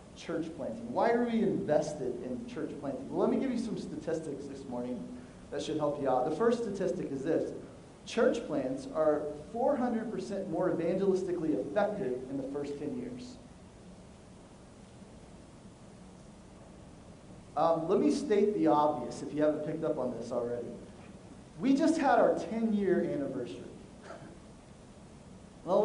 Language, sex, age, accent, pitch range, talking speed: English, male, 30-49, American, 155-215 Hz, 140 wpm